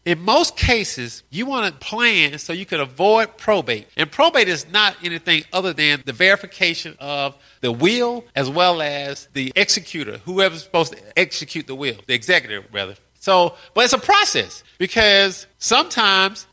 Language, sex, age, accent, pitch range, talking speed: English, male, 40-59, American, 155-220 Hz, 165 wpm